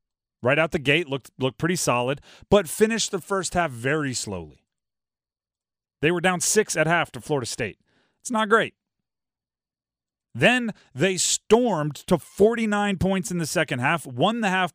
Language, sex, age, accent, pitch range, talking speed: English, male, 30-49, American, 145-195 Hz, 165 wpm